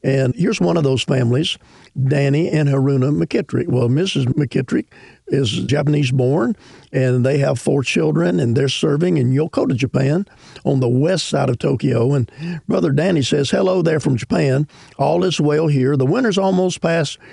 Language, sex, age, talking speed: English, male, 50-69, 165 wpm